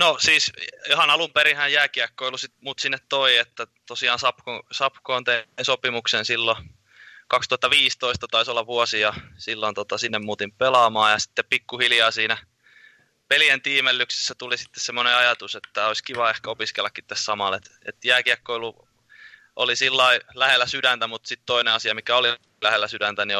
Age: 20-39